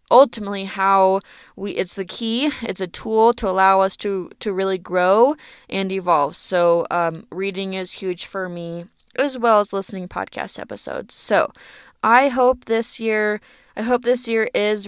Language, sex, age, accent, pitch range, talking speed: English, female, 20-39, American, 195-235 Hz, 165 wpm